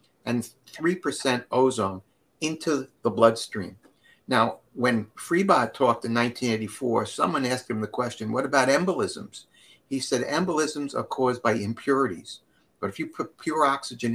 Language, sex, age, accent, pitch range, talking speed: English, male, 60-79, American, 110-130 Hz, 140 wpm